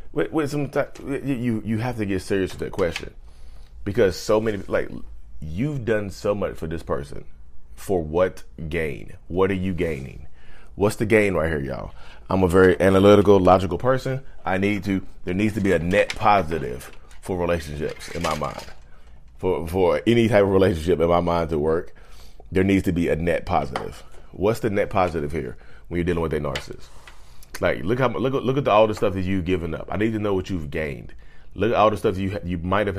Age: 30-49